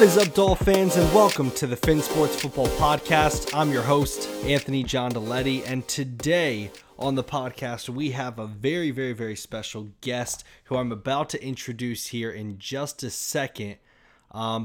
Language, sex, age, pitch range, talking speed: English, male, 20-39, 120-150 Hz, 175 wpm